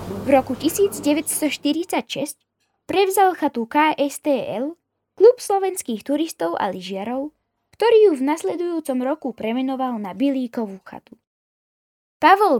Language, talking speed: Slovak, 100 wpm